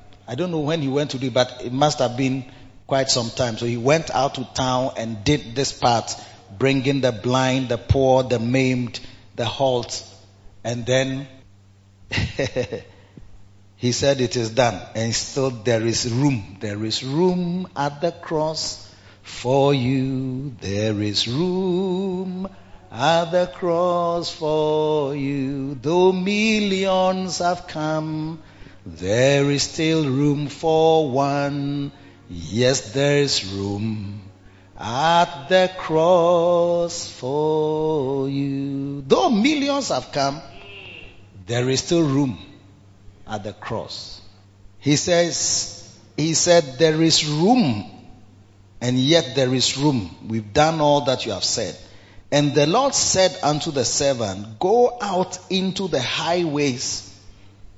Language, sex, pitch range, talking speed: English, male, 110-155 Hz, 130 wpm